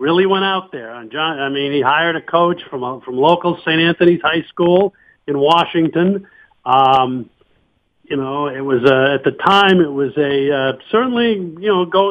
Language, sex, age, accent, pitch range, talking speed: English, male, 50-69, American, 140-180 Hz, 195 wpm